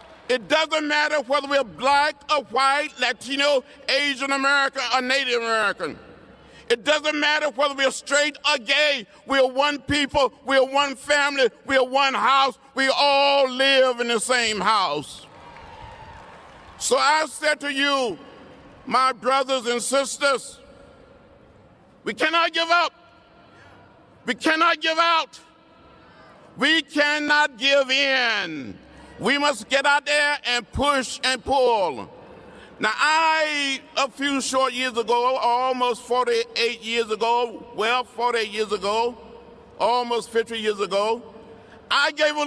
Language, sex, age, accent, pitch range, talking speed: English, male, 50-69, American, 245-285 Hz, 125 wpm